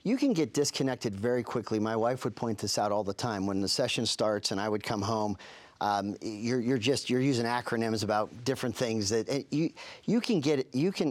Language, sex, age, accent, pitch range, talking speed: English, male, 50-69, American, 115-155 Hz, 220 wpm